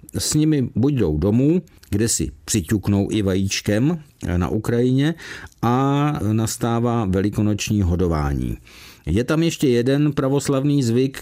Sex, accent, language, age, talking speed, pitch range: male, native, Czech, 50-69, 120 wpm, 95-130 Hz